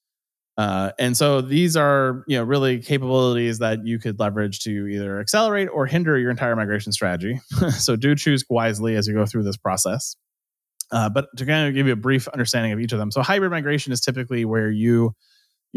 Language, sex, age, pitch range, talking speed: English, male, 20-39, 110-135 Hz, 205 wpm